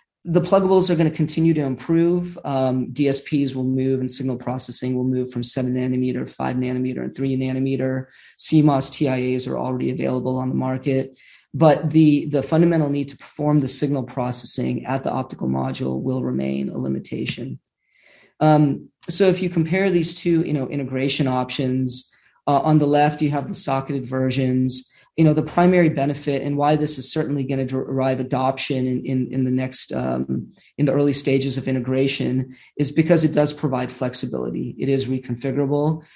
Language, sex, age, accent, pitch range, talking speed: English, male, 30-49, American, 130-150 Hz, 175 wpm